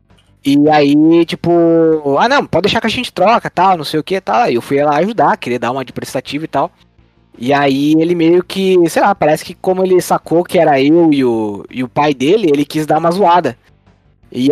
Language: Portuguese